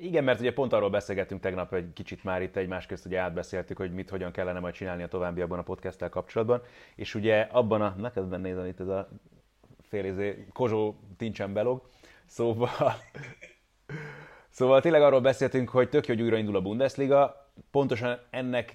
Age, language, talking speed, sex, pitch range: 30-49, Hungarian, 180 wpm, male, 95-115 Hz